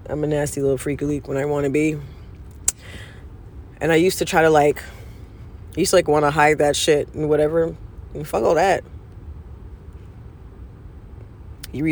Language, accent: English, American